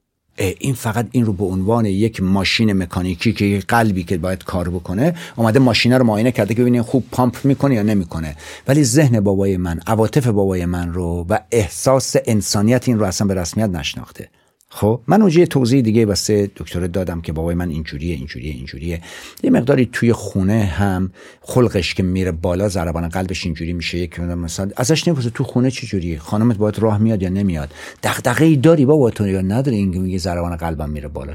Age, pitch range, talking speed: 50-69, 90-130 Hz, 190 wpm